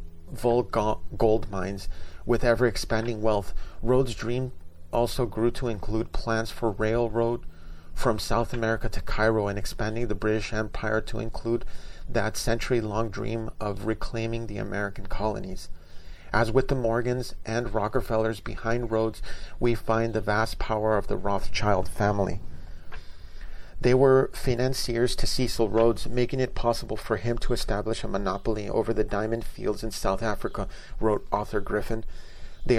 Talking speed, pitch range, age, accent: 140 wpm, 100-115 Hz, 40-59, American